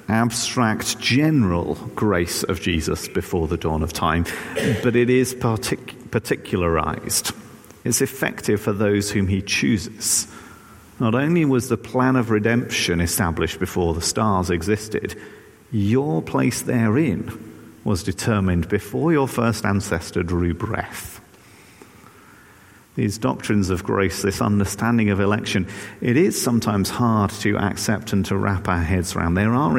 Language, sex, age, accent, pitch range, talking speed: English, male, 50-69, British, 95-115 Hz, 135 wpm